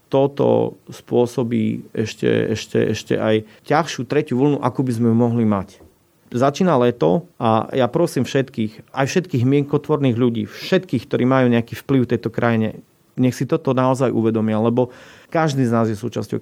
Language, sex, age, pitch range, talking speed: Slovak, male, 40-59, 115-140 Hz, 155 wpm